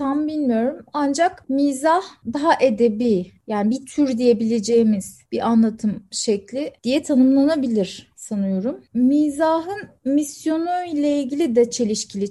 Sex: female